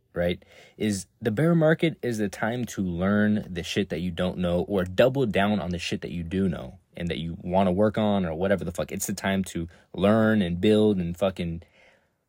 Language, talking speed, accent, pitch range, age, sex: English, 225 wpm, American, 95-115 Hz, 20-39, male